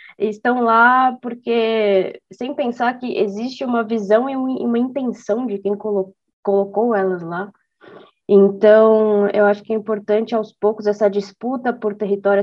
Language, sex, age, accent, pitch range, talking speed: Portuguese, female, 20-39, Brazilian, 200-240 Hz, 145 wpm